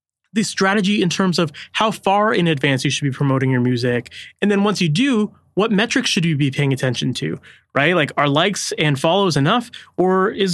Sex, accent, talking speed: male, American, 210 wpm